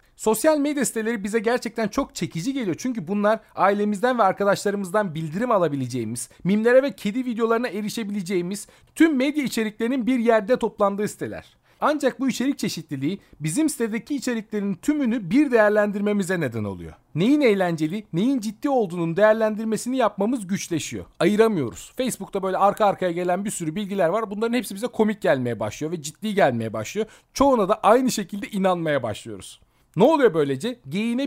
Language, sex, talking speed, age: Turkish, male, 150 wpm, 40-59